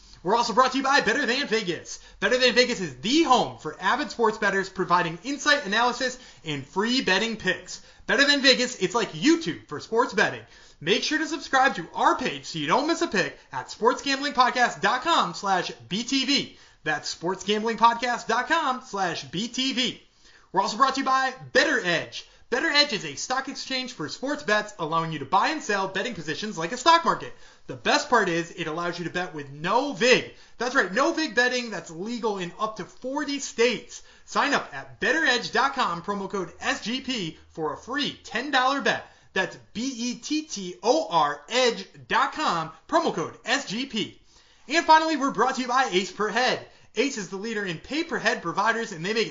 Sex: male